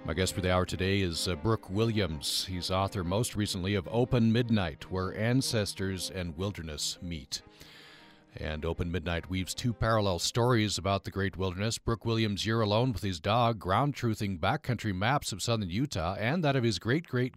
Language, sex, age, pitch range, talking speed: English, male, 40-59, 90-115 Hz, 180 wpm